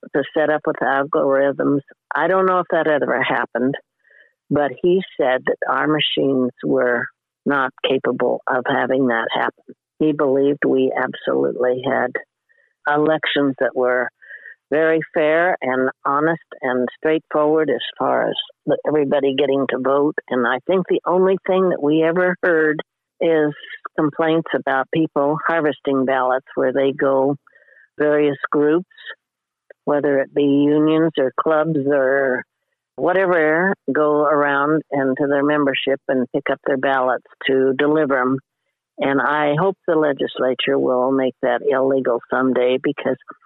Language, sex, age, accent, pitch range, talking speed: English, female, 60-79, American, 135-160 Hz, 140 wpm